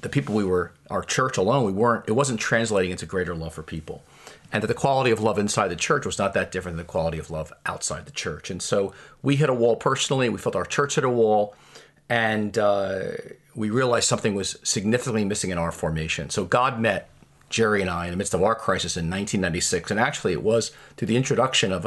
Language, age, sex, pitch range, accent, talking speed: English, 40-59, male, 95-125 Hz, American, 235 wpm